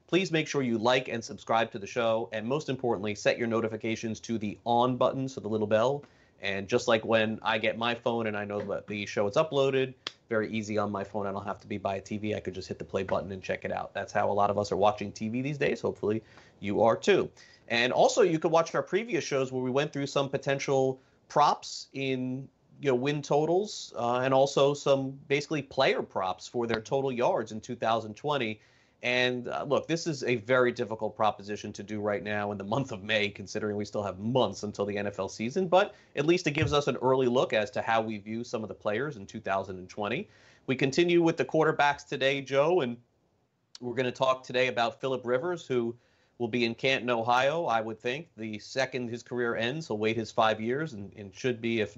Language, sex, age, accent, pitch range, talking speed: English, male, 30-49, American, 105-135 Hz, 225 wpm